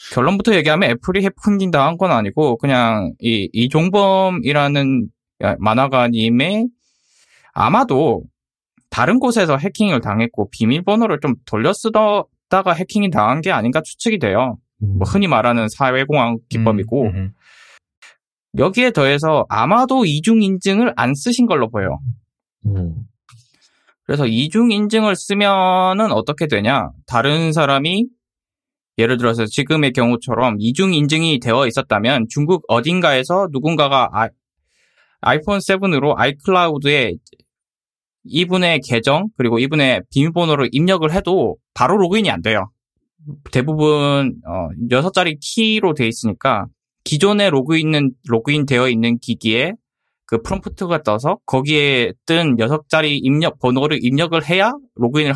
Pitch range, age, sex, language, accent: 120-190 Hz, 20-39, male, Korean, native